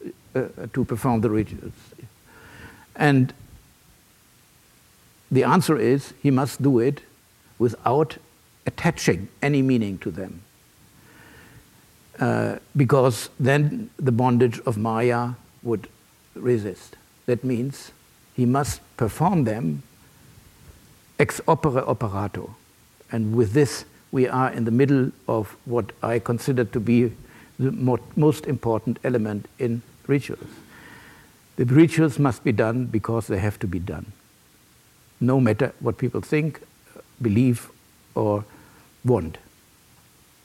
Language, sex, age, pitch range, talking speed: English, male, 60-79, 115-135 Hz, 110 wpm